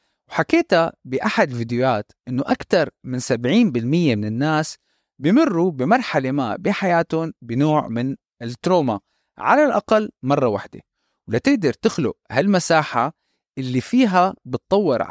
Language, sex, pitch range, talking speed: Arabic, male, 125-180 Hz, 105 wpm